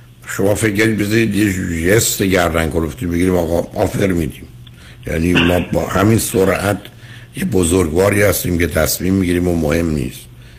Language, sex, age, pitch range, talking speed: Persian, male, 60-79, 85-120 Hz, 140 wpm